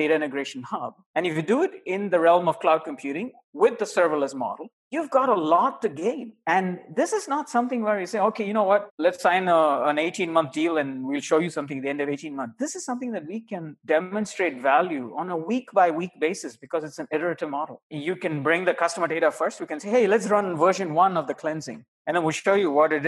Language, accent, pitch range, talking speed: English, Indian, 160-240 Hz, 245 wpm